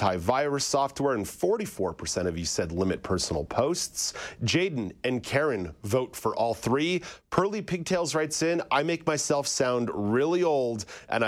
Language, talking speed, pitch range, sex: English, 150 wpm, 100-140 Hz, male